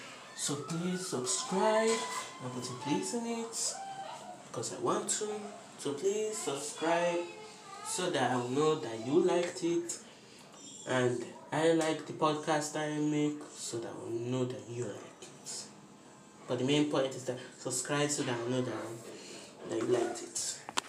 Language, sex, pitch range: Greek, male, 130-175 Hz